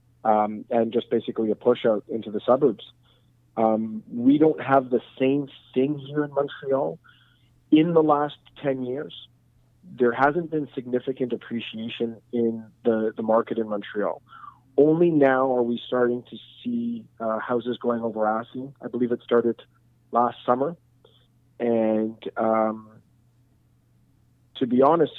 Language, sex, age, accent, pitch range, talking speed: English, male, 30-49, American, 115-130 Hz, 140 wpm